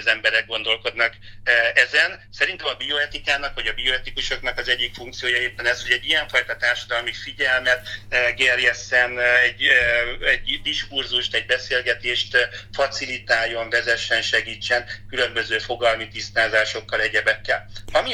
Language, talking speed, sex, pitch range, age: Hungarian, 115 wpm, male, 110-125 Hz, 60-79